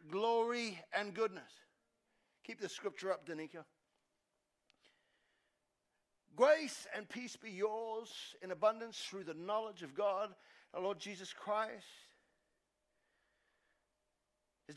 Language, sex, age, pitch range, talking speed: English, male, 50-69, 215-295 Hz, 100 wpm